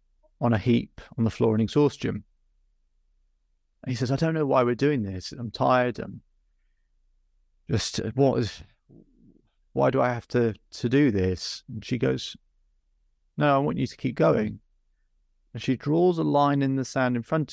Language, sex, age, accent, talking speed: English, male, 30-49, British, 180 wpm